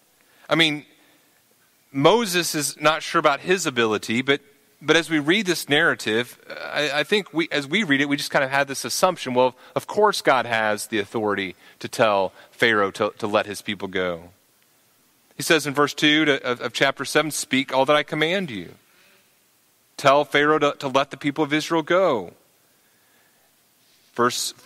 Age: 30-49